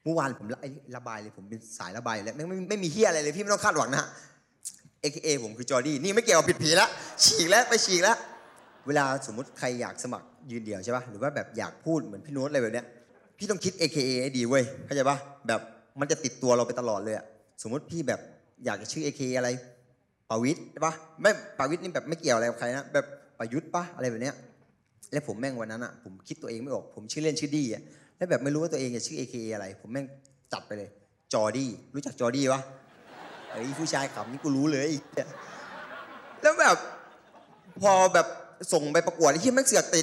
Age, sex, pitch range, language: 20-39, male, 120-165 Hz, Thai